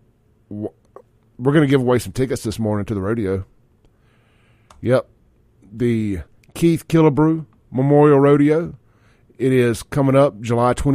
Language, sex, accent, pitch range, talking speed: English, male, American, 110-140 Hz, 125 wpm